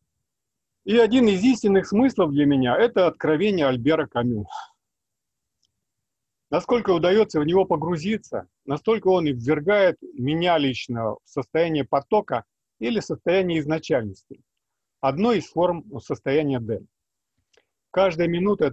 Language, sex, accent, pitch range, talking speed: Russian, male, native, 135-195 Hz, 110 wpm